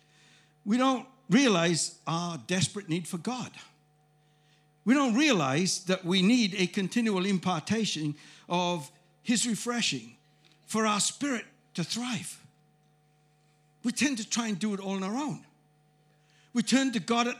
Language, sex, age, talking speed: English, male, 60-79, 140 wpm